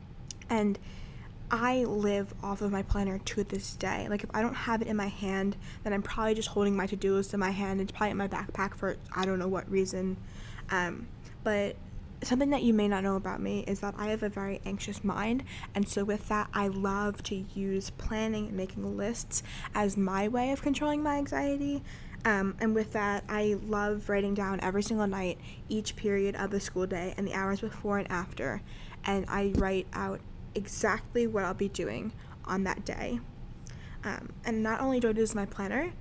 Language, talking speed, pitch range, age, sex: English, 205 wpm, 195-220 Hz, 10-29, female